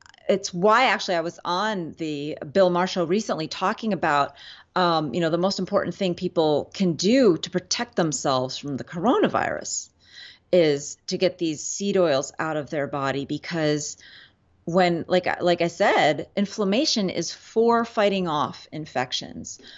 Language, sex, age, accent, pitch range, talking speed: English, female, 30-49, American, 155-190 Hz, 150 wpm